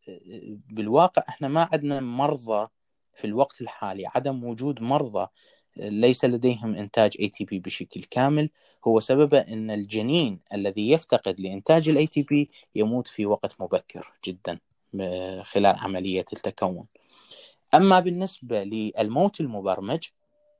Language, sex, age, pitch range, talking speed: Arabic, male, 20-39, 100-130 Hz, 110 wpm